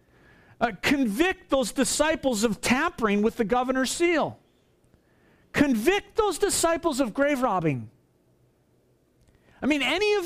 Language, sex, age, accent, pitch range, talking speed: English, male, 50-69, American, 160-255 Hz, 115 wpm